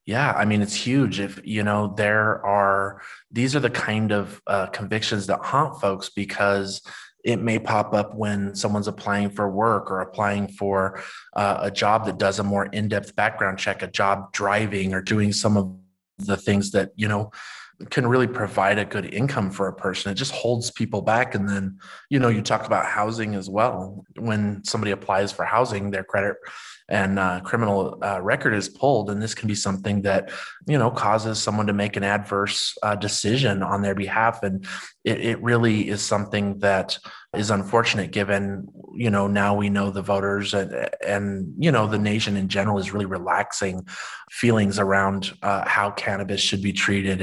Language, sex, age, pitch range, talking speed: English, male, 20-39, 95-110 Hz, 190 wpm